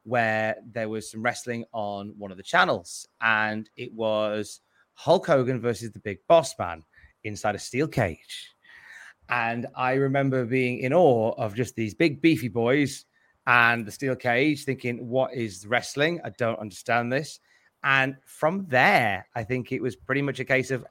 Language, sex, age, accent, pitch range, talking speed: English, male, 30-49, British, 110-130 Hz, 170 wpm